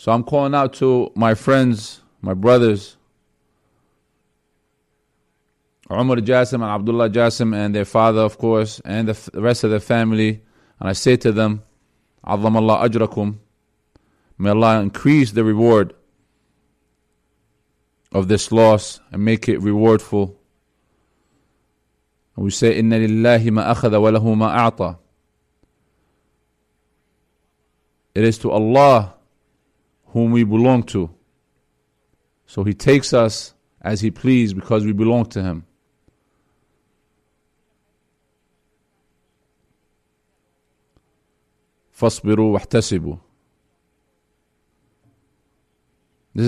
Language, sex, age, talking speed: English, male, 30-49, 85 wpm